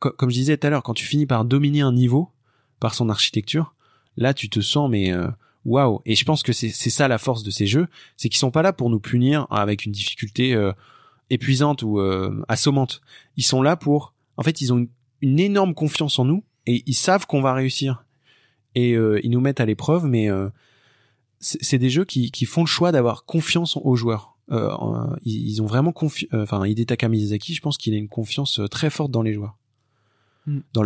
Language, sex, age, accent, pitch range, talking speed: French, male, 20-39, French, 110-140 Hz, 220 wpm